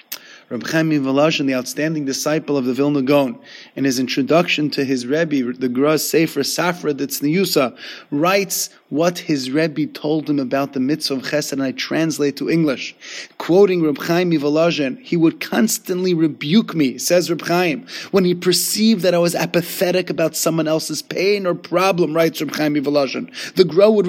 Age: 30-49